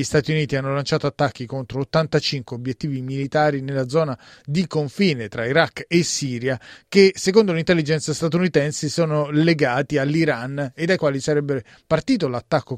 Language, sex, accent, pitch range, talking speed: Italian, male, native, 130-155 Hz, 145 wpm